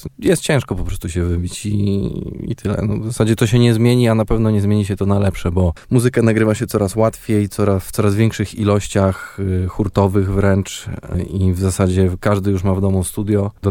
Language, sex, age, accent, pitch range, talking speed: Polish, male, 20-39, native, 95-110 Hz, 210 wpm